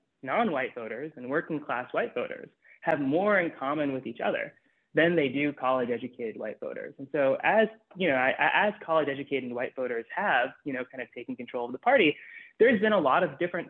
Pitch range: 135-195 Hz